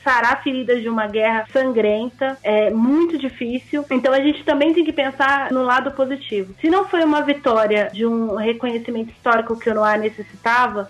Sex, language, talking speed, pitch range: female, Portuguese, 175 wpm, 225-260 Hz